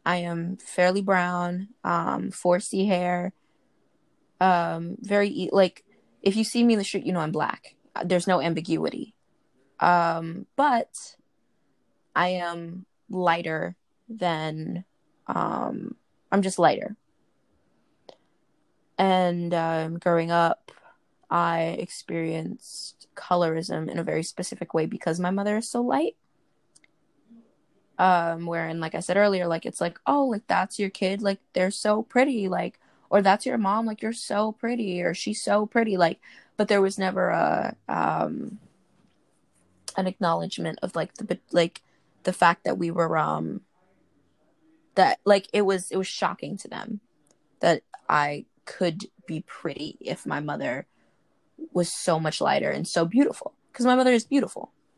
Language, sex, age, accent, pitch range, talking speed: English, female, 20-39, American, 170-205 Hz, 145 wpm